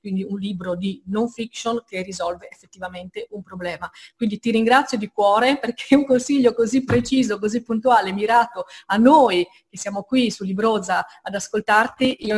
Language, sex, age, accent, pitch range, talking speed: Italian, female, 30-49, native, 195-240 Hz, 165 wpm